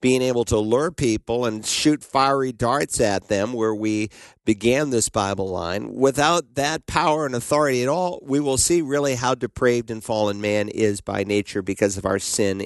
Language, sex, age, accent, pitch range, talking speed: English, male, 50-69, American, 110-140 Hz, 190 wpm